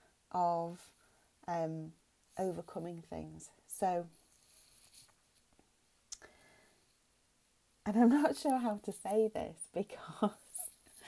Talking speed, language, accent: 75 wpm, English, British